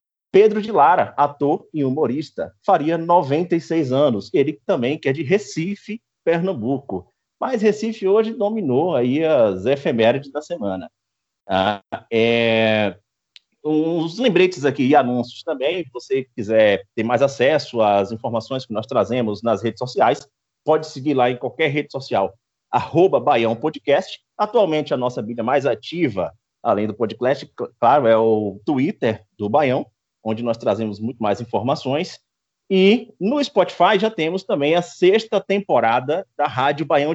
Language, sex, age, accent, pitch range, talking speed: Portuguese, male, 30-49, Brazilian, 115-170 Hz, 145 wpm